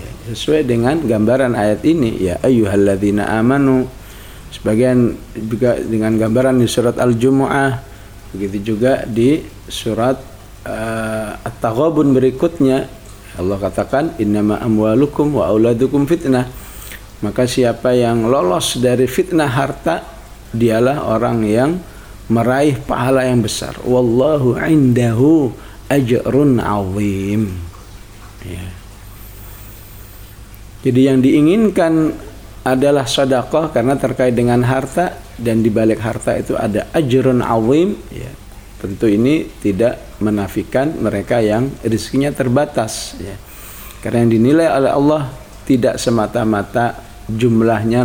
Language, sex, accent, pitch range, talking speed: English, male, Indonesian, 105-130 Hz, 100 wpm